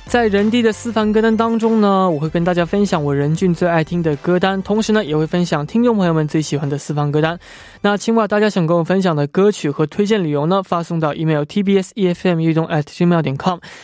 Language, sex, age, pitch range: Korean, male, 20-39, 155-205 Hz